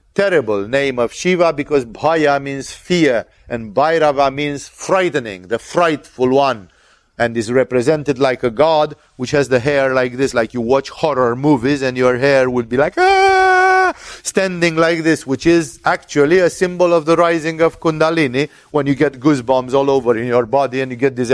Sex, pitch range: male, 135-175 Hz